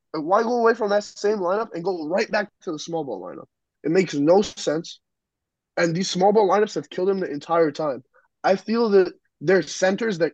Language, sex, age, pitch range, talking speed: English, male, 20-39, 150-185 Hz, 220 wpm